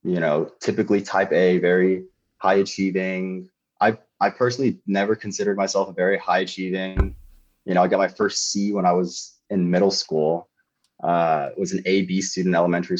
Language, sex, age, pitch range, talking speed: English, male, 20-39, 85-105 Hz, 175 wpm